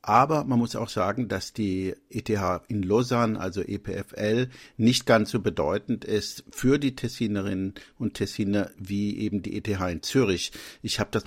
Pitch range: 100-115 Hz